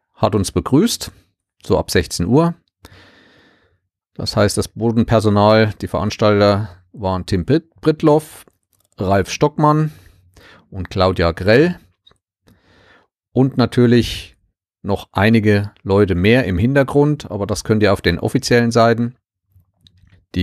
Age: 40-59